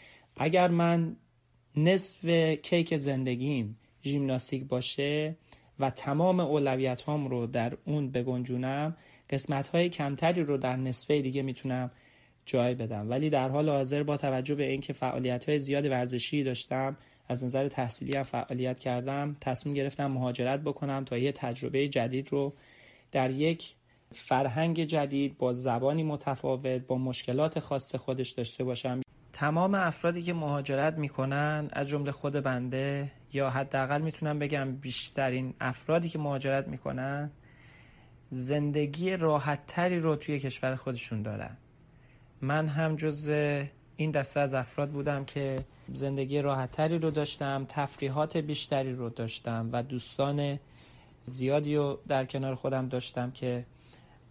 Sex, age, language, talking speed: male, 30-49, Persian, 125 wpm